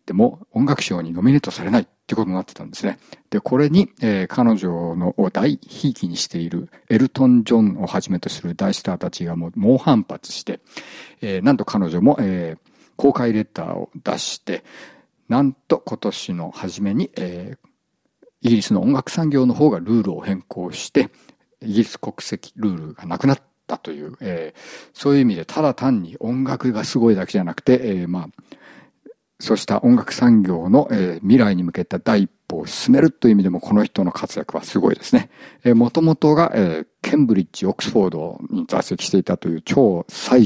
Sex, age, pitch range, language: male, 50-69, 95-130 Hz, Japanese